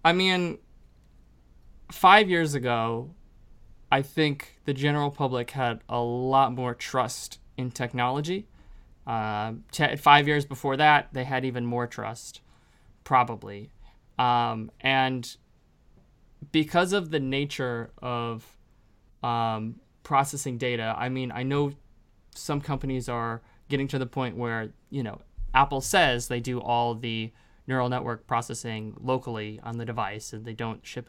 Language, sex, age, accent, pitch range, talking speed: English, male, 20-39, American, 115-140 Hz, 135 wpm